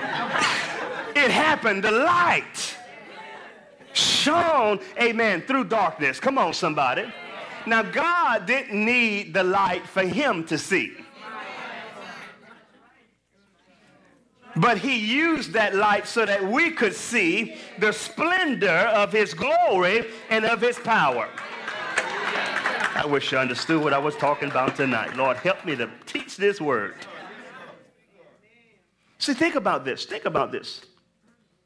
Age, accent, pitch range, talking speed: 40-59, American, 160-235 Hz, 120 wpm